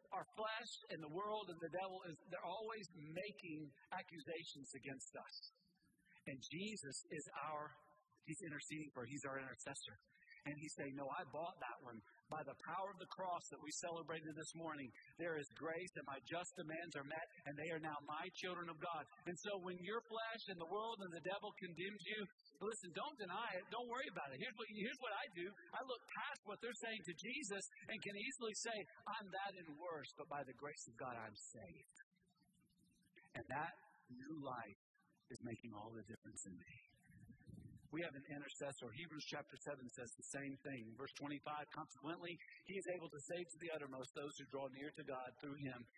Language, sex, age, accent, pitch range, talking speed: English, male, 50-69, American, 140-180 Hz, 200 wpm